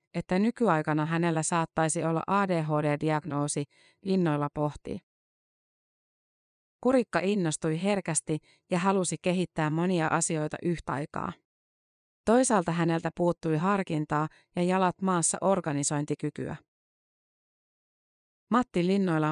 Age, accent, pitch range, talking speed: 30-49, native, 155-185 Hz, 85 wpm